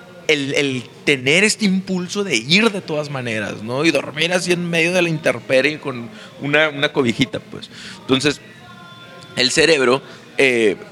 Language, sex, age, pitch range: Spanish, male, 30-49, 115-150 Hz